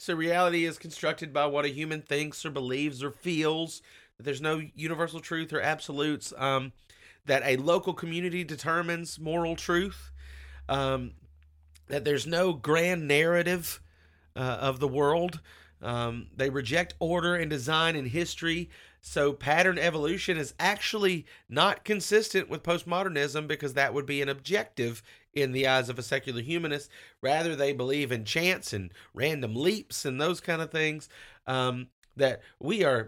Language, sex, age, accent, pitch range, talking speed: English, male, 30-49, American, 135-170 Hz, 155 wpm